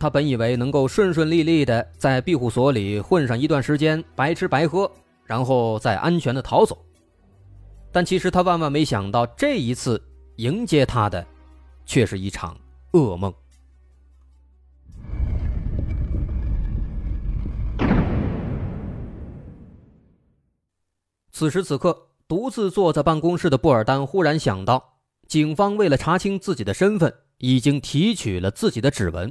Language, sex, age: Chinese, male, 20-39